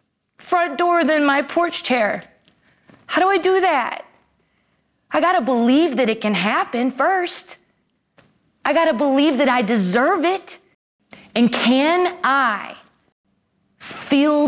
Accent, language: American, English